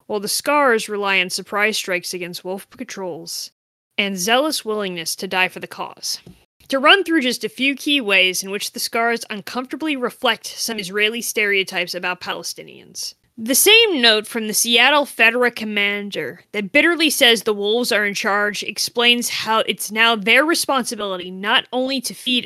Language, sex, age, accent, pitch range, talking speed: English, female, 20-39, American, 195-260 Hz, 170 wpm